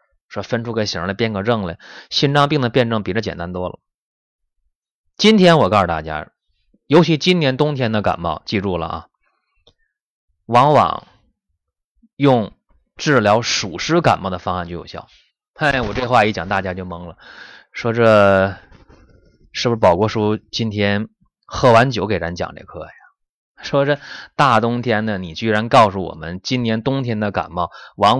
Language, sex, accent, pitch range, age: Chinese, male, native, 90-120 Hz, 20-39